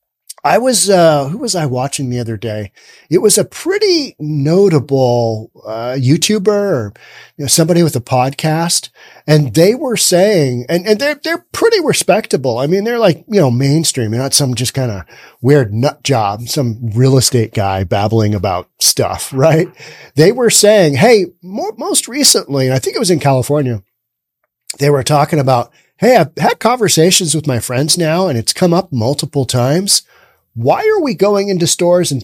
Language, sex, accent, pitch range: English, male, American, 130-200 Hz